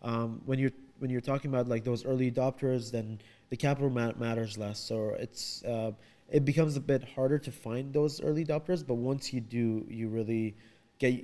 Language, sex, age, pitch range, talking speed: English, male, 20-39, 110-130 Hz, 200 wpm